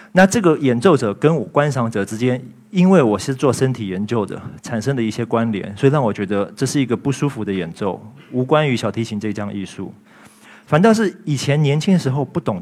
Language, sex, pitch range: Chinese, male, 105-140 Hz